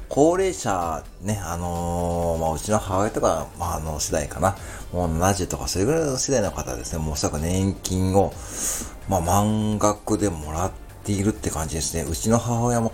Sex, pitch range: male, 80-105 Hz